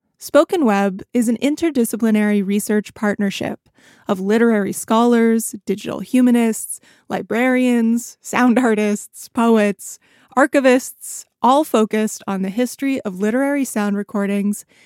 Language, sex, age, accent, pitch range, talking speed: English, female, 20-39, American, 205-250 Hz, 105 wpm